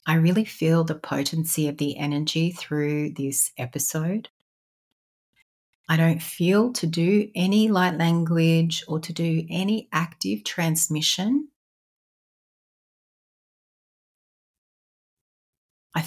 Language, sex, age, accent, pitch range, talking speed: English, female, 30-49, Australian, 150-175 Hz, 95 wpm